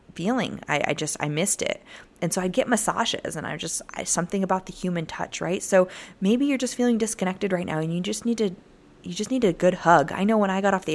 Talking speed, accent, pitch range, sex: 265 wpm, American, 165-205 Hz, female